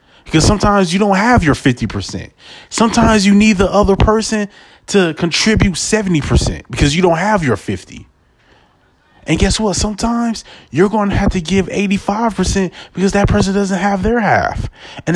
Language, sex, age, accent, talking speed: English, male, 30-49, American, 160 wpm